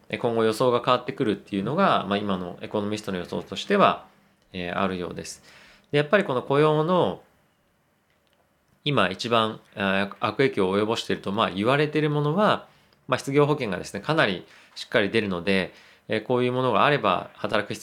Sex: male